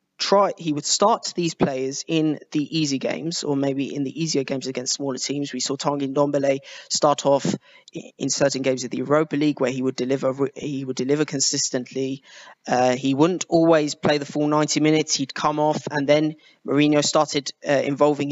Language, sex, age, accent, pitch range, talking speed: English, male, 20-39, British, 135-155 Hz, 190 wpm